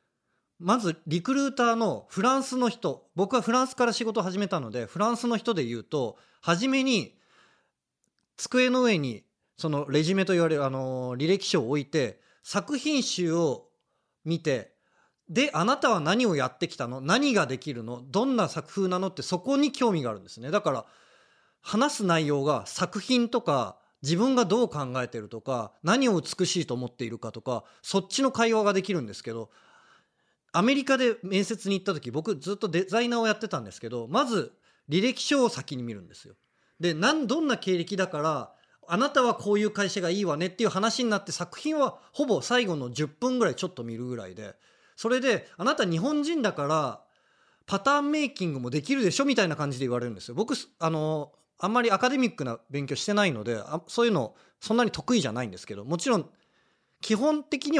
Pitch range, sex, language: 140-235 Hz, male, Japanese